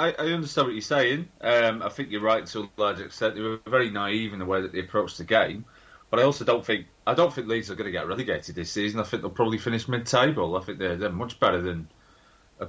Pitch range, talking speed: 95-115 Hz, 265 wpm